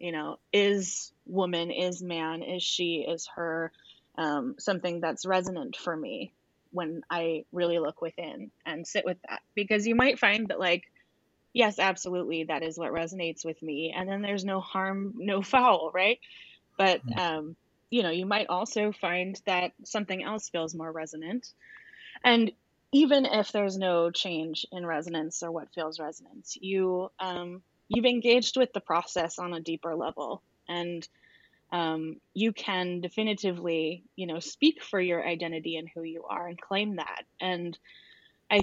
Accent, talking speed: American, 160 wpm